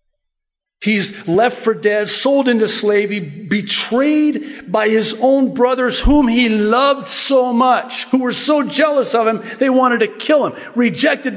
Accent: American